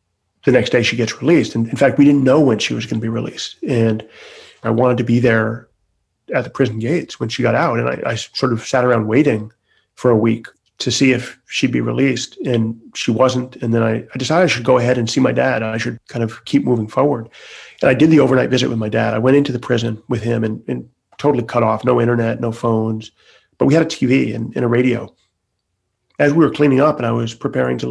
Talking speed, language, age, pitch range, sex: 250 wpm, English, 40-59, 105-130 Hz, male